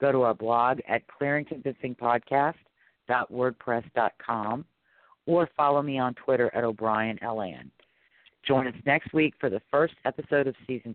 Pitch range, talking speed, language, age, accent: 115-140 Hz, 125 wpm, English, 50-69, American